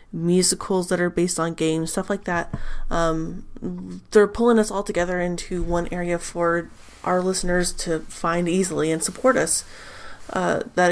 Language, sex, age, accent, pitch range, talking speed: English, female, 20-39, American, 165-190 Hz, 160 wpm